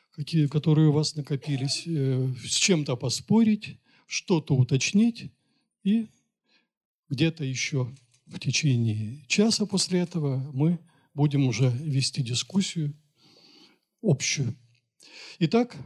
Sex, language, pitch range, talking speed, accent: male, Russian, 140-190 Hz, 90 wpm, native